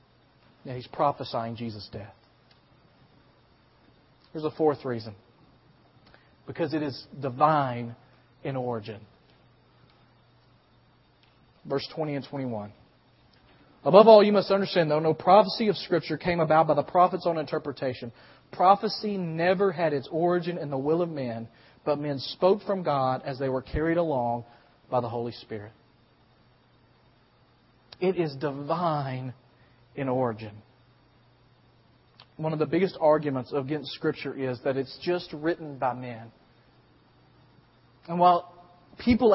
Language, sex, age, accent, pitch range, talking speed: English, male, 40-59, American, 125-170 Hz, 125 wpm